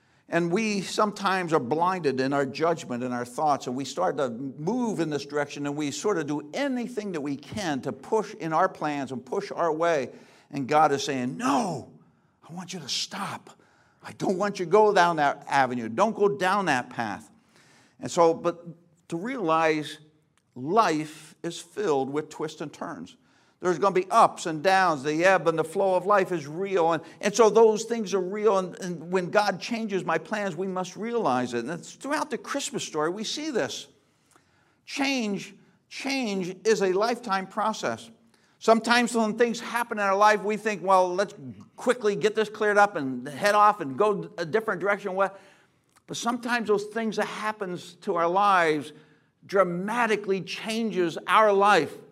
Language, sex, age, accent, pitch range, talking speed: English, male, 60-79, American, 155-210 Hz, 185 wpm